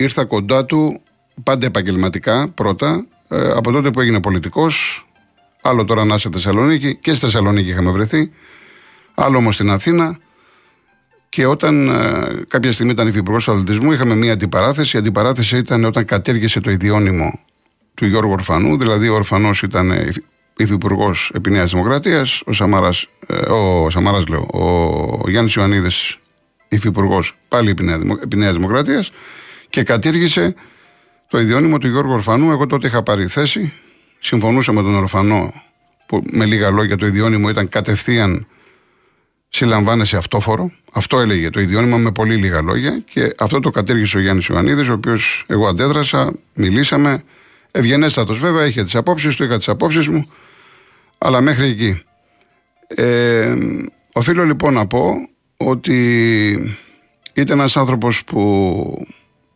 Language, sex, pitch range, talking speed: Greek, male, 100-130 Hz, 135 wpm